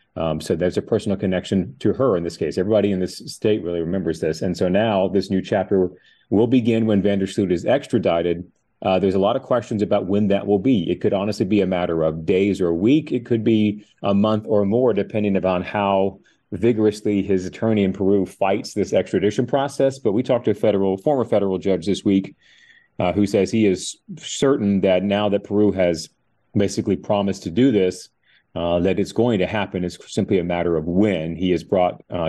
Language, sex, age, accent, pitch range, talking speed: English, male, 30-49, American, 90-105 Hz, 215 wpm